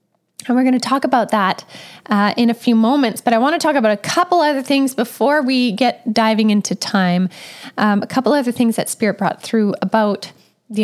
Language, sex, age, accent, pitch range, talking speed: English, female, 10-29, American, 210-270 Hz, 215 wpm